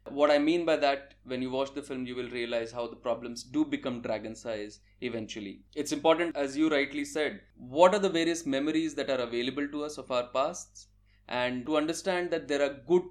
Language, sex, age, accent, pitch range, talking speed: English, male, 20-39, Indian, 120-155 Hz, 215 wpm